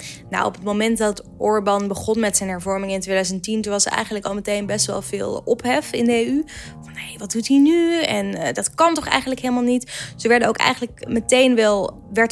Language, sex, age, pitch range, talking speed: Dutch, female, 20-39, 195-235 Hz, 230 wpm